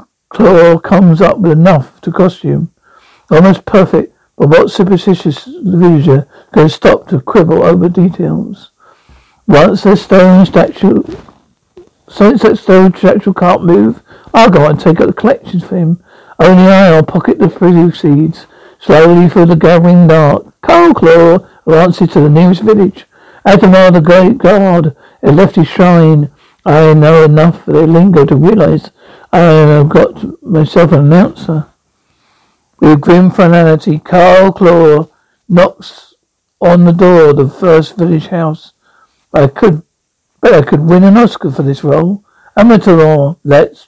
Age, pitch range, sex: 60-79, 160-190 Hz, male